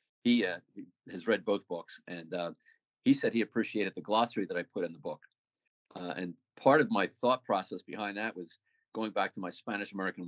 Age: 50-69